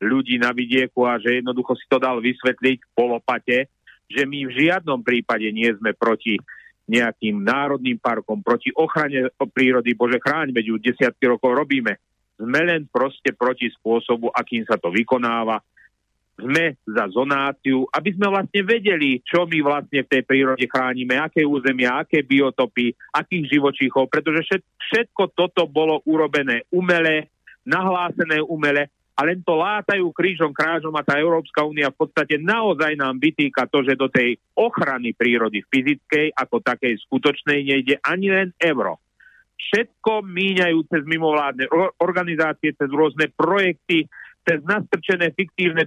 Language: Slovak